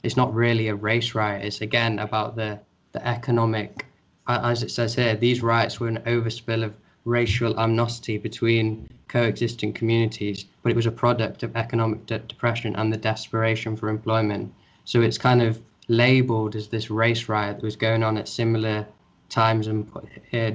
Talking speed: 170 wpm